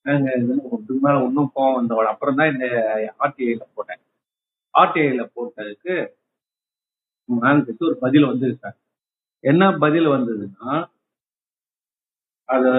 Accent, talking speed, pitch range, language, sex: native, 95 wpm, 150-210 Hz, Tamil, male